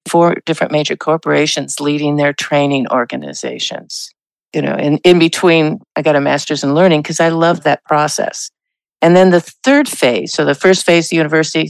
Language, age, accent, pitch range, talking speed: English, 50-69, American, 145-175 Hz, 180 wpm